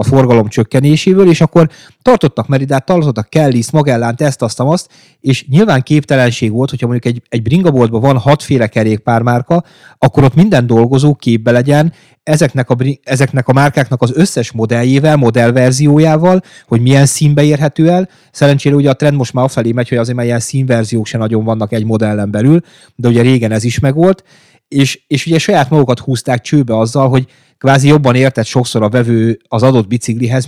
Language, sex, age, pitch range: Hungarian, male, 30-49, 120-150 Hz